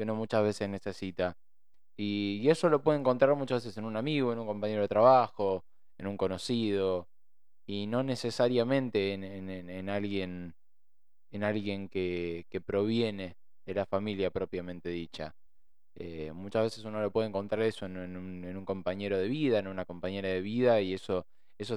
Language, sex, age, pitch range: Spanish, male, 20-39, 95-105 Hz